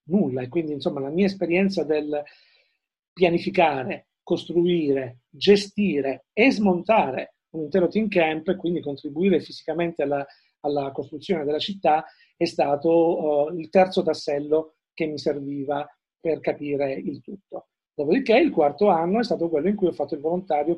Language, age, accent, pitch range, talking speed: Italian, 40-59, native, 150-180 Hz, 145 wpm